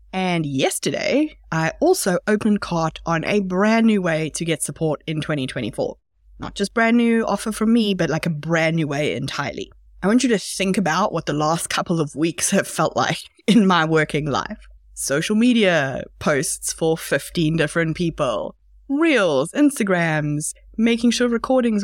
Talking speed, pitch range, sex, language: 170 wpm, 160-215 Hz, female, English